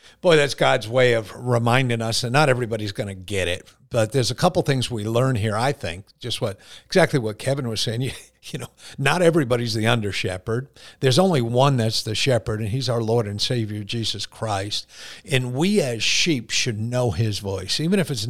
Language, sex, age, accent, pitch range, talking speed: English, male, 50-69, American, 115-145 Hz, 210 wpm